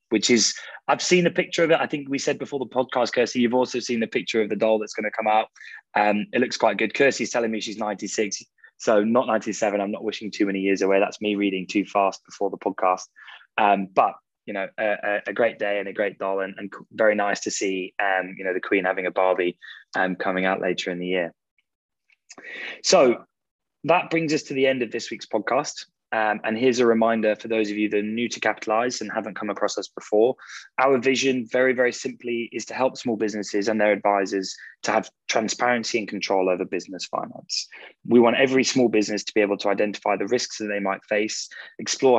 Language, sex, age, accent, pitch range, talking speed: English, male, 20-39, British, 100-125 Hz, 225 wpm